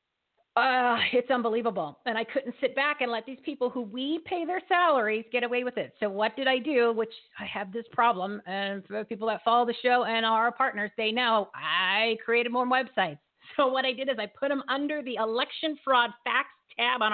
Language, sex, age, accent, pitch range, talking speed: English, female, 40-59, American, 210-265 Hz, 220 wpm